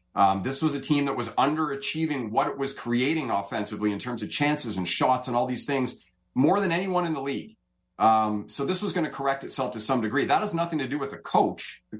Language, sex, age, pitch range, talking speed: English, male, 40-59, 110-145 Hz, 245 wpm